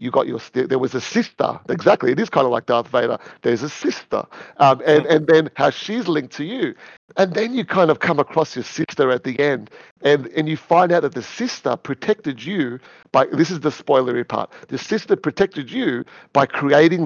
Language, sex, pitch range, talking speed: English, male, 130-175 Hz, 215 wpm